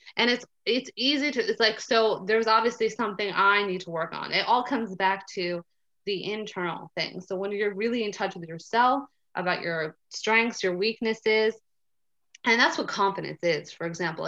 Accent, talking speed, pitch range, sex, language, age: American, 185 wpm, 180-225 Hz, female, English, 20-39